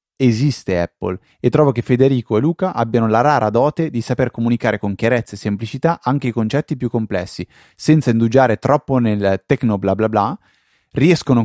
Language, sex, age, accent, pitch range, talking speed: Italian, male, 30-49, native, 105-140 Hz, 175 wpm